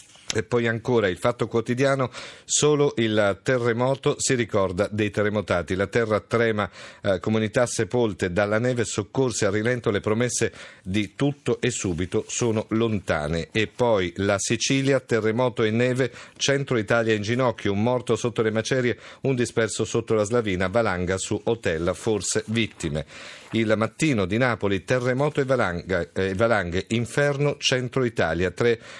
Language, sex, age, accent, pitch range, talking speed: Italian, male, 50-69, native, 105-125 Hz, 145 wpm